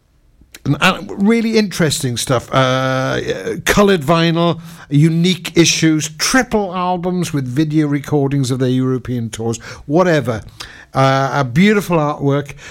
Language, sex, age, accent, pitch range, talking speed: English, male, 60-79, British, 110-155 Hz, 105 wpm